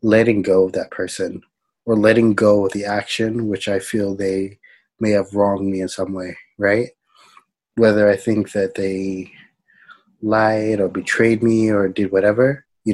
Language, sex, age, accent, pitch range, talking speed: English, male, 30-49, American, 95-110 Hz, 165 wpm